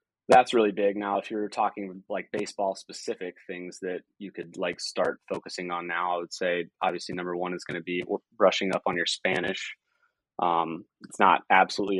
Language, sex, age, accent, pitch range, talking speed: English, male, 20-39, American, 90-105 Hz, 190 wpm